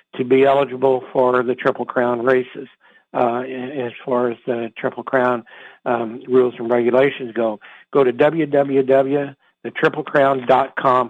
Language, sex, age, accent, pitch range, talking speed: English, male, 60-79, American, 130-150 Hz, 125 wpm